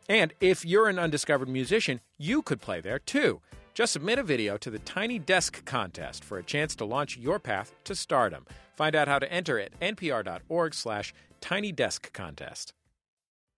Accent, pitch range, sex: American, 105-150 Hz, male